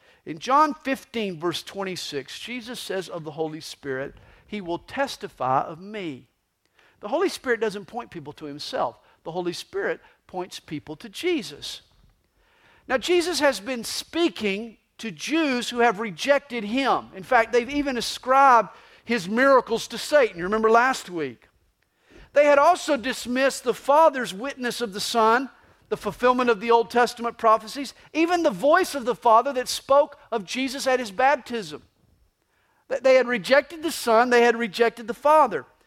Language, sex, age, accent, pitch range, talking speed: English, male, 50-69, American, 215-280 Hz, 160 wpm